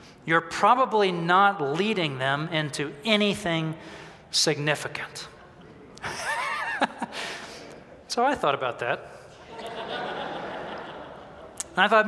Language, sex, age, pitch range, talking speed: English, male, 40-59, 155-220 Hz, 80 wpm